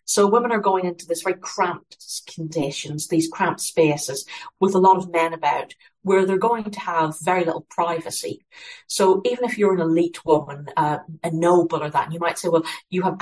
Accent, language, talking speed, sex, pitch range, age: British, English, 200 wpm, female, 160-190 Hz, 50-69